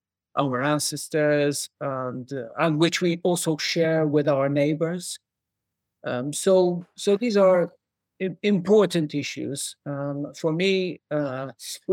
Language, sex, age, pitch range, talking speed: English, male, 50-69, 135-170 Hz, 120 wpm